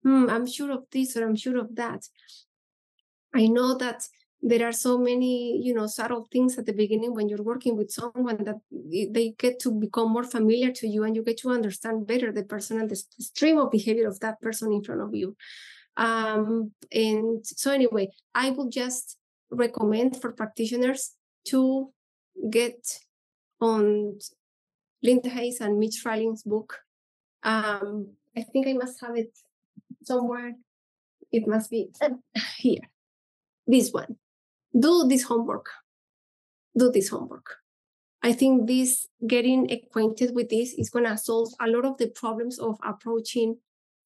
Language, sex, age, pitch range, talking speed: English, female, 20-39, 220-250 Hz, 155 wpm